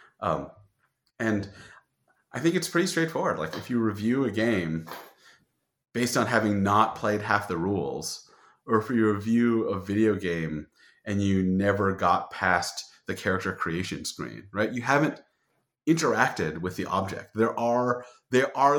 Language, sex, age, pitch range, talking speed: English, male, 30-49, 95-120 Hz, 155 wpm